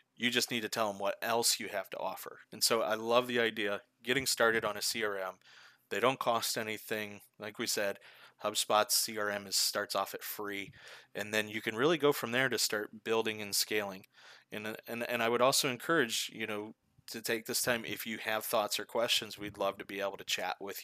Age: 30-49